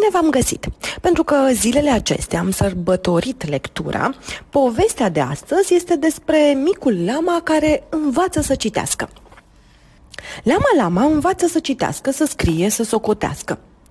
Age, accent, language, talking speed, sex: 30-49, native, Romanian, 125 wpm, female